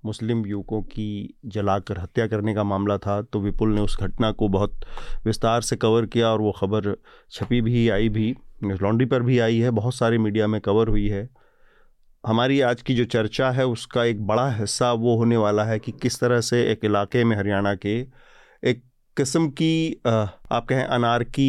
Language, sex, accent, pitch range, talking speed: Hindi, male, native, 110-130 Hz, 195 wpm